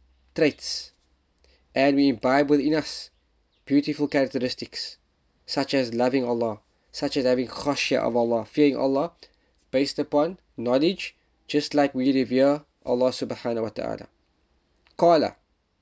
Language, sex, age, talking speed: English, male, 20-39, 120 wpm